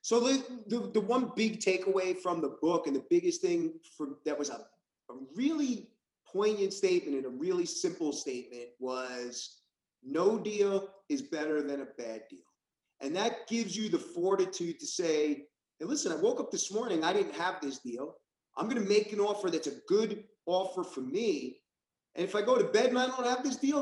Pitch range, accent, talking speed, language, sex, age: 150-245 Hz, American, 200 wpm, English, male, 30-49